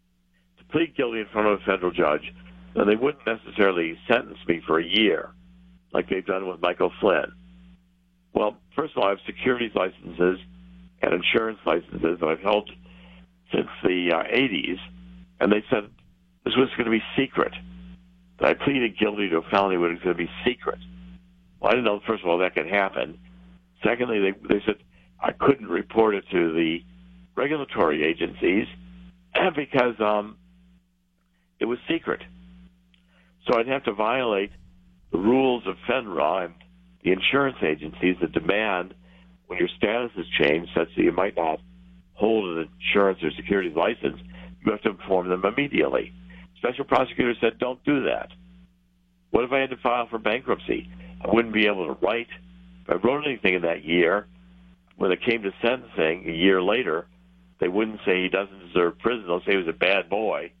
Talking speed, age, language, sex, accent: 175 wpm, 60-79, English, male, American